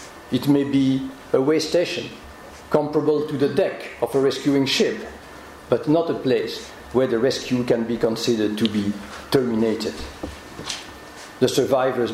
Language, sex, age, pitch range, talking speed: English, male, 50-69, 110-135 Hz, 145 wpm